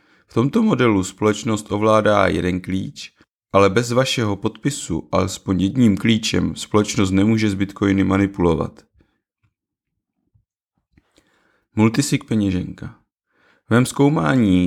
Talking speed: 95 wpm